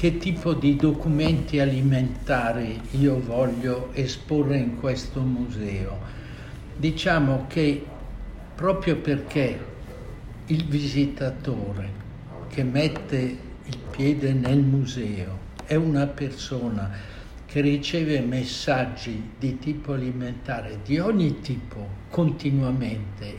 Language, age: English, 60-79